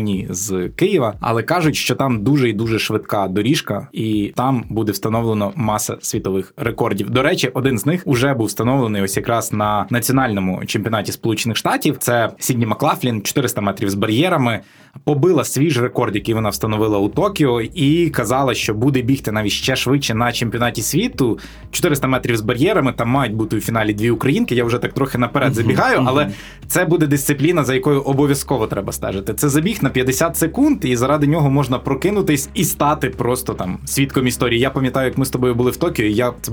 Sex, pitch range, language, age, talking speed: male, 110-135 Hz, Ukrainian, 20-39, 185 wpm